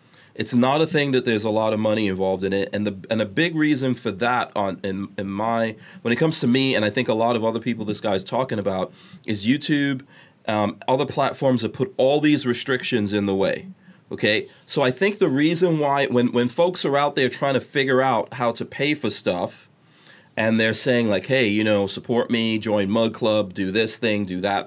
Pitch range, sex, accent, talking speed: 100-130 Hz, male, American, 230 wpm